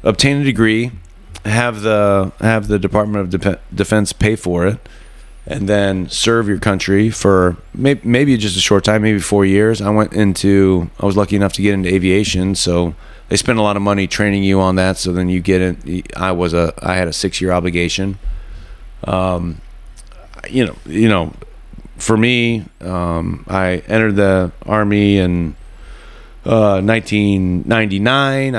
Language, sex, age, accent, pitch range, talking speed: English, male, 30-49, American, 90-105 Hz, 165 wpm